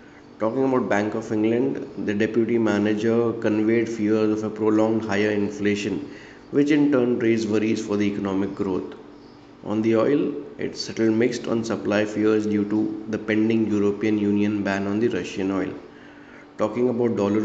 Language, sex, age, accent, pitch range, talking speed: English, male, 20-39, Indian, 105-115 Hz, 160 wpm